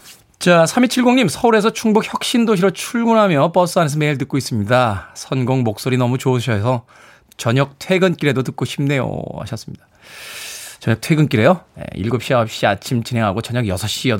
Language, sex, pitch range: Korean, male, 125-185 Hz